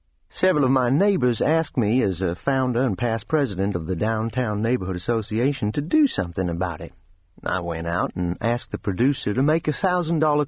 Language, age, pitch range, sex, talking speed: English, 50-69, 95-135 Hz, male, 190 wpm